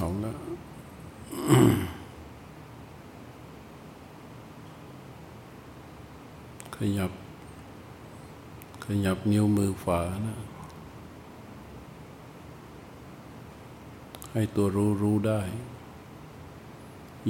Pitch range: 100-115 Hz